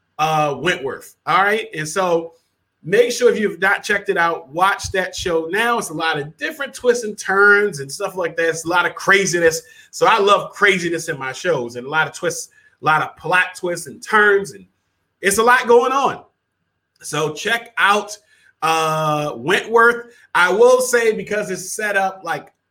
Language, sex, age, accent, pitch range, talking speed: English, male, 30-49, American, 170-230 Hz, 195 wpm